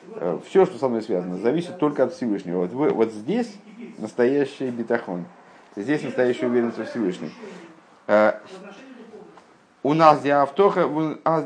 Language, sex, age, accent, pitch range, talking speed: Russian, male, 50-69, native, 105-155 Hz, 110 wpm